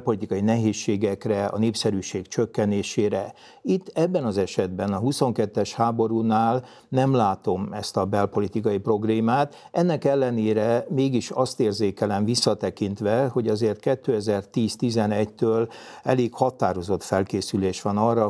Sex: male